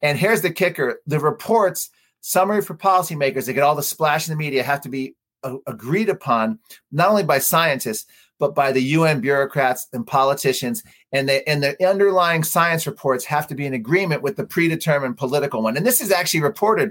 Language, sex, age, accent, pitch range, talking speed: English, male, 40-59, American, 140-180 Hz, 200 wpm